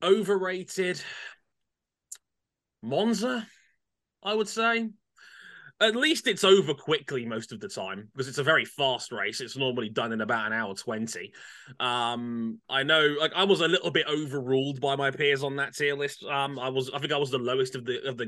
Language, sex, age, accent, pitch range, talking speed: English, male, 20-39, British, 115-160 Hz, 190 wpm